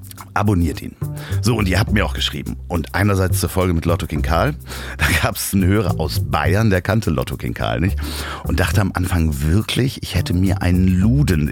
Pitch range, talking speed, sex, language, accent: 80-105 Hz, 210 wpm, male, German, German